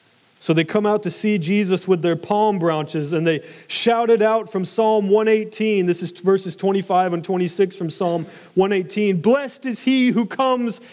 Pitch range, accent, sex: 150-220 Hz, American, male